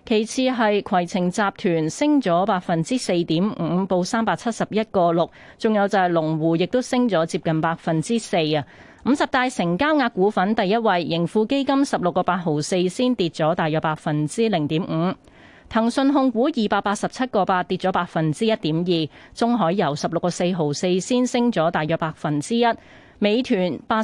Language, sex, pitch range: Chinese, female, 170-235 Hz